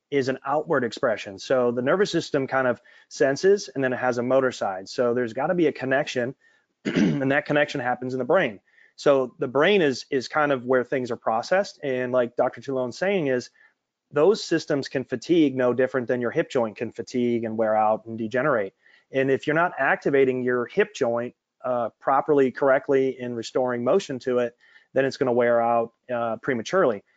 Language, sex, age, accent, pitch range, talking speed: English, male, 30-49, American, 125-150 Hz, 195 wpm